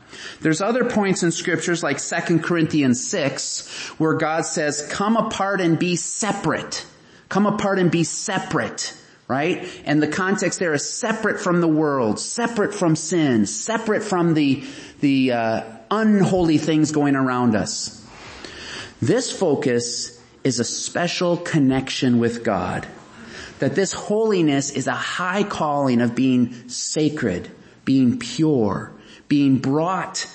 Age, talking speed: 30-49, 130 wpm